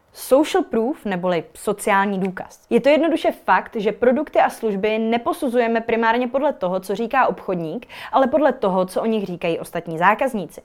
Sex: female